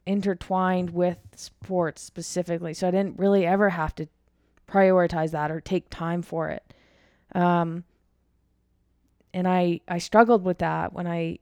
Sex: female